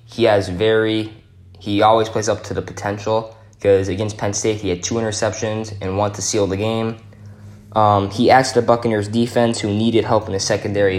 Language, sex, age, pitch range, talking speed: English, male, 10-29, 100-110 Hz, 195 wpm